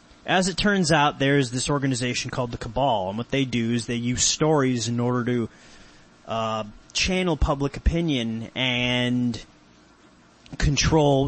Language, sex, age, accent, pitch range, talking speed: English, male, 30-49, American, 120-150 Hz, 145 wpm